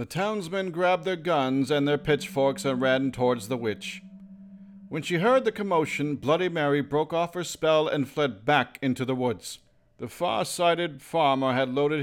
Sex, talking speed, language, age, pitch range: male, 175 wpm, English, 50-69, 130-175 Hz